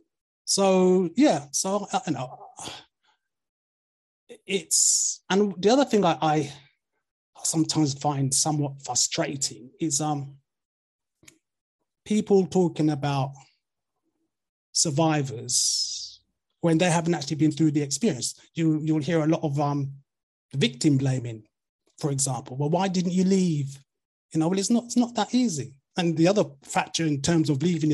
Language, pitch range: English, 140-185 Hz